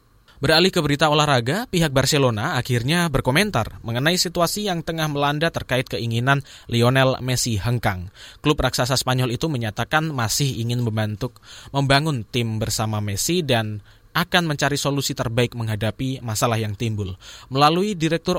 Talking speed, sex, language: 135 wpm, male, Indonesian